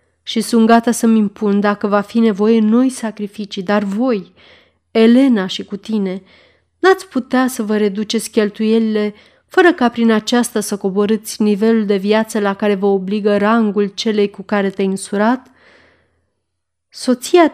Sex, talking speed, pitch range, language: female, 145 wpm, 195-235 Hz, Romanian